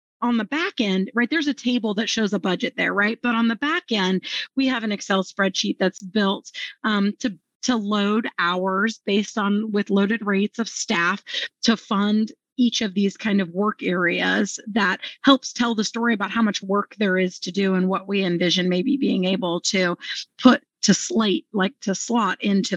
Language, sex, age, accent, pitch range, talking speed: English, female, 30-49, American, 195-235 Hz, 200 wpm